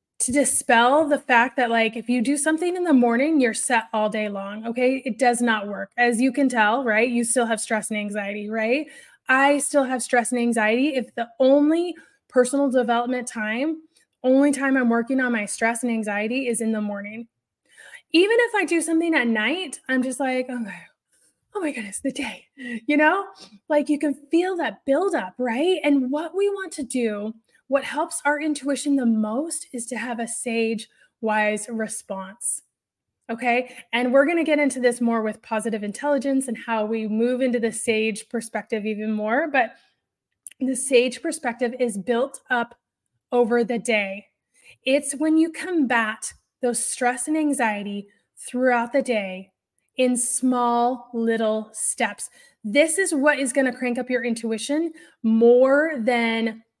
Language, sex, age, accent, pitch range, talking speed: English, female, 20-39, American, 225-280 Hz, 170 wpm